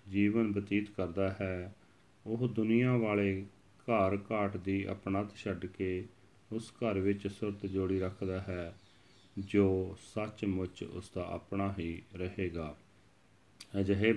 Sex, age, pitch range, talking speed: male, 40-59, 95-110 Hz, 120 wpm